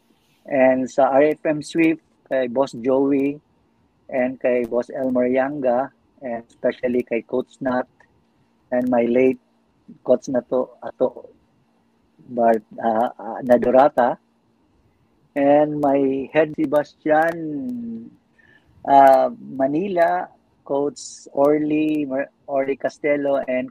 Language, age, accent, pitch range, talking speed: English, 50-69, Filipino, 125-140 Hz, 95 wpm